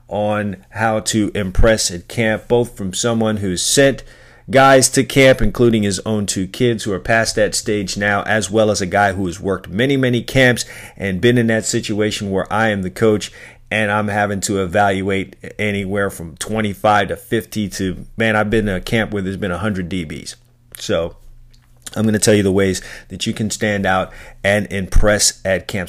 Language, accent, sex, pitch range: English, American, male, 95-115 Hz